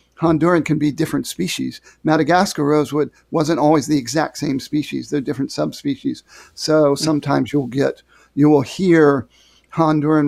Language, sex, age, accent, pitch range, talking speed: English, male, 50-69, American, 140-155 Hz, 140 wpm